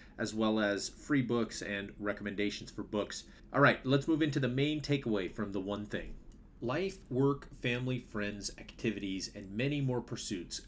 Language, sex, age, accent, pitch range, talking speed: English, male, 30-49, American, 105-140 Hz, 170 wpm